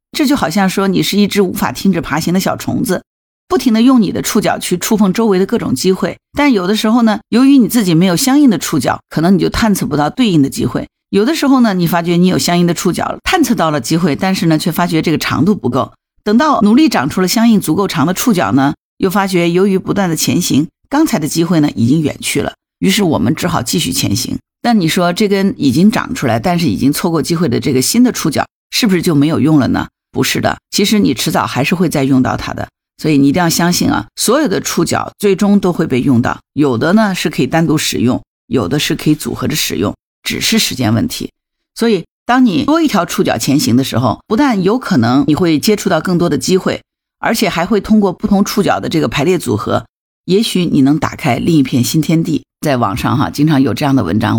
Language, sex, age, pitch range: Chinese, female, 50-69, 155-220 Hz